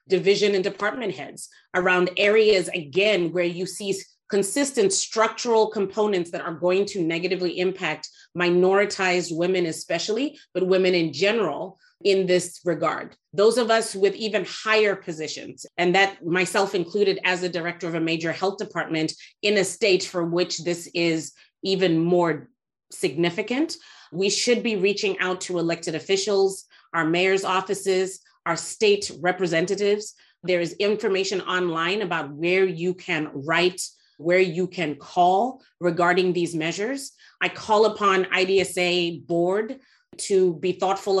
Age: 30-49